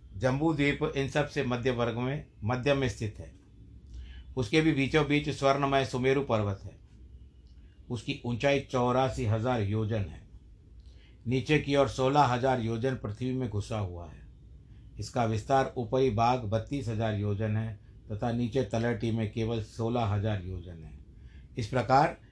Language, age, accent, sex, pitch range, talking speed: Hindi, 50-69, native, male, 105-135 Hz, 150 wpm